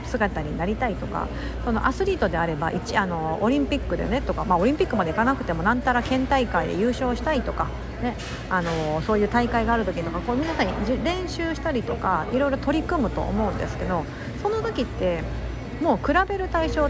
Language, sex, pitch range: Japanese, female, 205-300 Hz